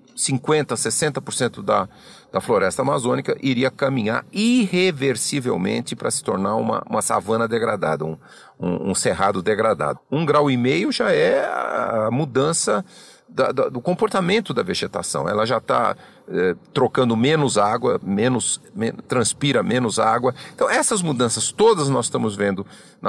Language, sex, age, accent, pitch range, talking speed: Portuguese, male, 40-59, Brazilian, 125-185 Hz, 140 wpm